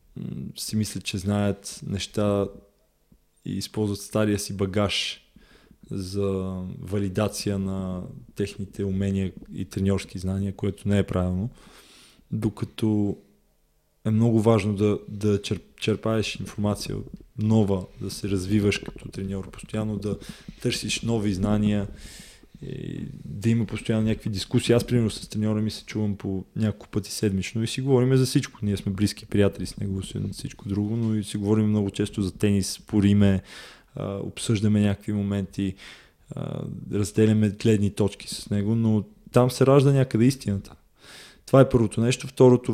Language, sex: Bulgarian, male